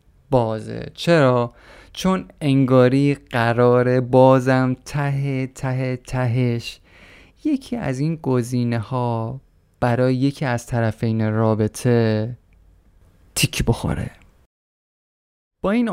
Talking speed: 85 wpm